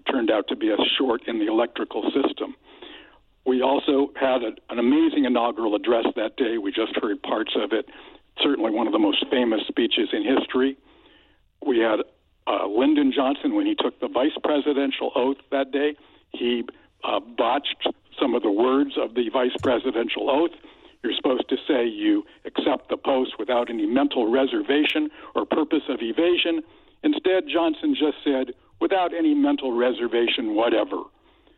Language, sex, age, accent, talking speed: English, male, 60-79, American, 160 wpm